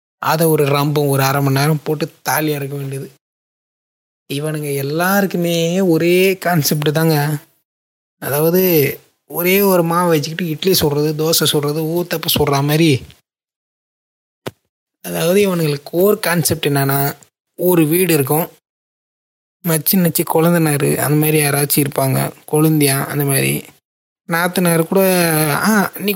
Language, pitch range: Tamil, 155-180 Hz